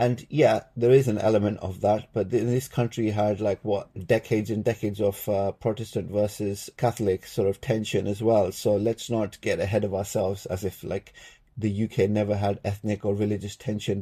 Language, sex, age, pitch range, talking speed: English, male, 30-49, 105-120 Hz, 195 wpm